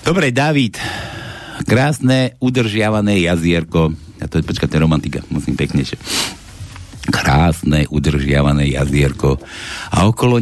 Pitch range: 85-135 Hz